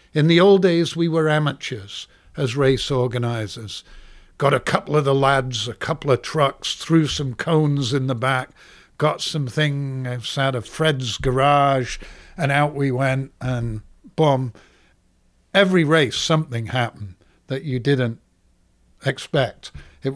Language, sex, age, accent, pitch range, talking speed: English, male, 60-79, British, 125-145 Hz, 140 wpm